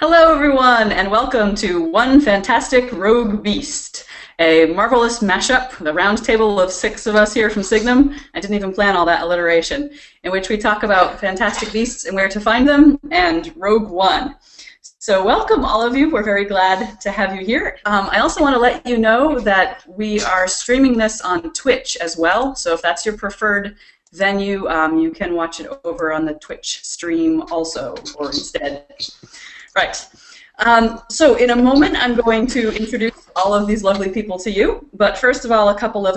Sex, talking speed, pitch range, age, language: female, 190 wpm, 190-250 Hz, 30-49, English